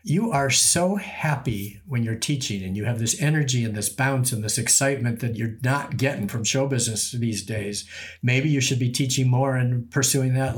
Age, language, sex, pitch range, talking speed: 50-69, English, male, 115-135 Hz, 205 wpm